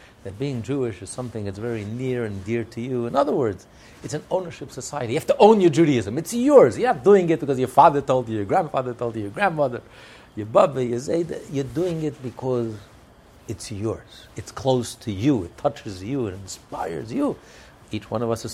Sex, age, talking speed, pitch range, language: male, 60-79, 215 wpm, 110-150 Hz, English